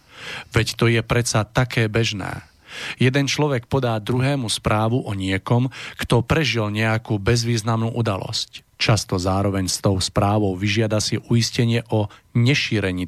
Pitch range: 105-120 Hz